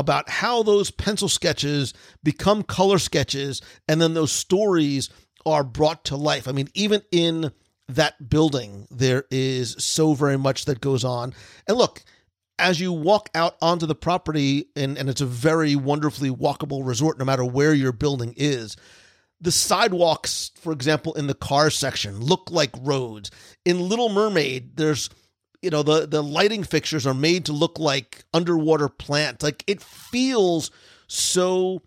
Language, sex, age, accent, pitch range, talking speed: English, male, 40-59, American, 135-165 Hz, 160 wpm